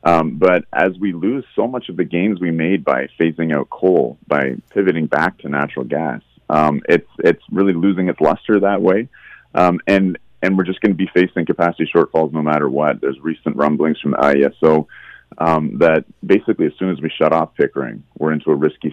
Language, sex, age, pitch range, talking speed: English, male, 30-49, 75-85 Hz, 205 wpm